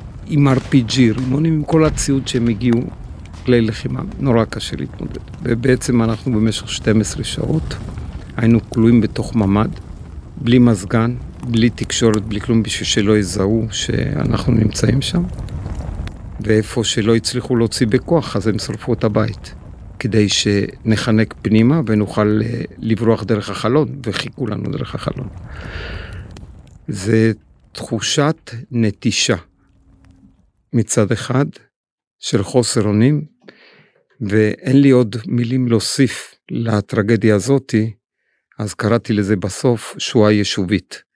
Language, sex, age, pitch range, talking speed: Hebrew, male, 50-69, 105-125 Hz, 110 wpm